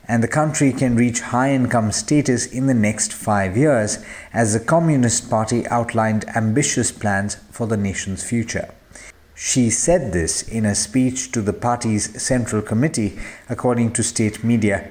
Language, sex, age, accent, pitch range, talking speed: English, male, 50-69, Indian, 110-135 Hz, 155 wpm